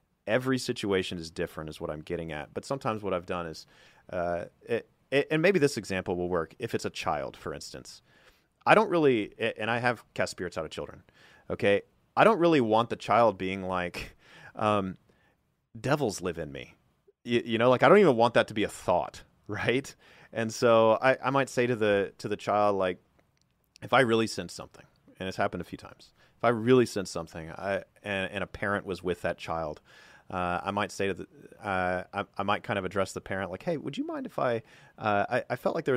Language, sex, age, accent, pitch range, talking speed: English, male, 30-49, American, 90-115 Hz, 225 wpm